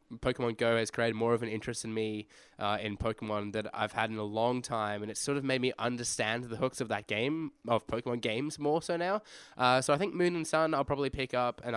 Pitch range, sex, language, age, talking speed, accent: 110-135 Hz, male, English, 10-29, 255 wpm, Australian